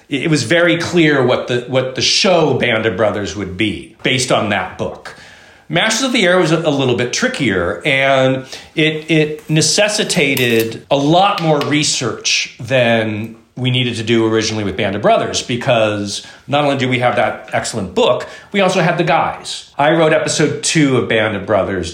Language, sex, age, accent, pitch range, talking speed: English, male, 40-59, American, 115-160 Hz, 185 wpm